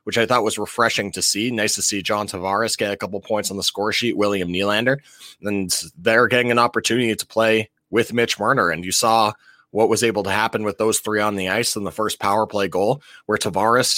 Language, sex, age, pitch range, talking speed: English, male, 20-39, 100-120 Hz, 230 wpm